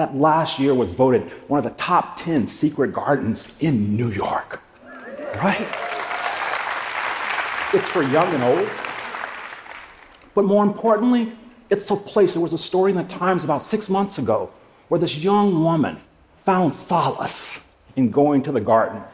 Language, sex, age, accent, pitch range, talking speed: English, male, 40-59, American, 130-200 Hz, 155 wpm